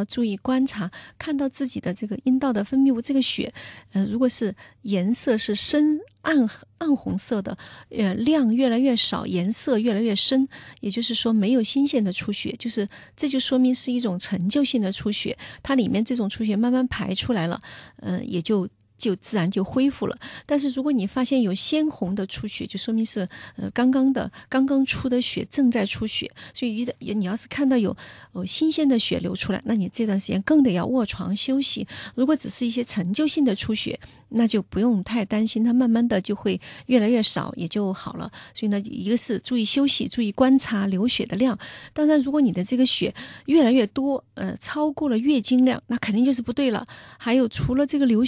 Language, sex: Chinese, female